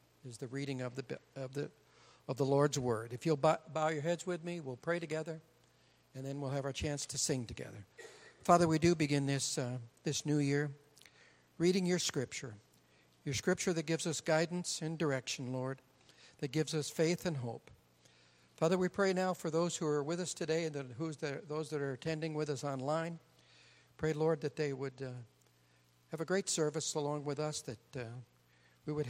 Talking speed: 200 wpm